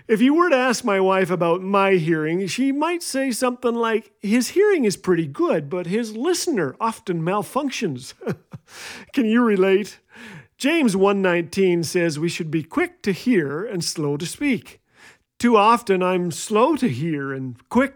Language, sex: English, male